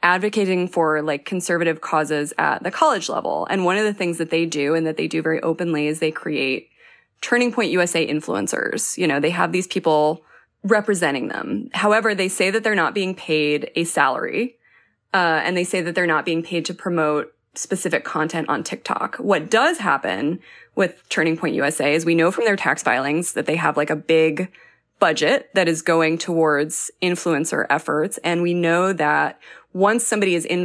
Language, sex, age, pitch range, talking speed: English, female, 20-39, 160-190 Hz, 190 wpm